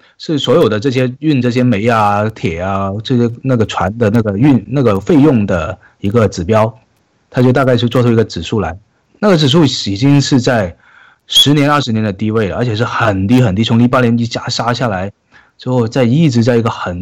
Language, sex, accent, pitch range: Chinese, male, native, 105-130 Hz